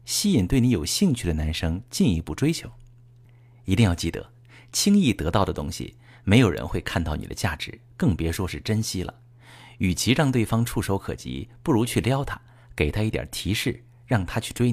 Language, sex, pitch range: Chinese, male, 90-120 Hz